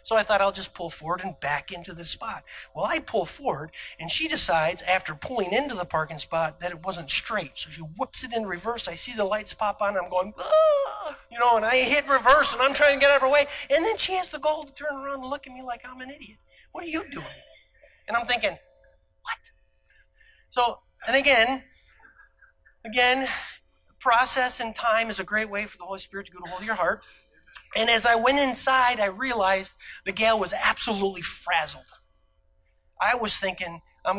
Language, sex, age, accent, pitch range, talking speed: English, male, 30-49, American, 190-255 Hz, 215 wpm